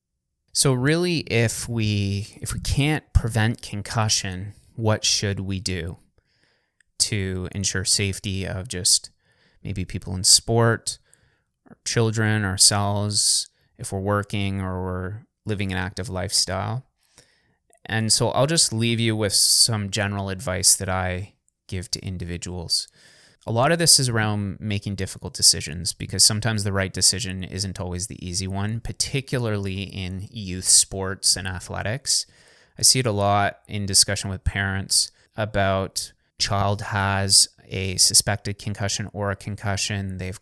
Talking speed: 140 wpm